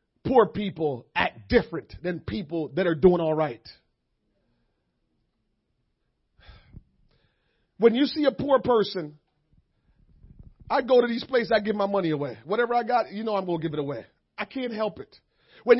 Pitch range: 220-360 Hz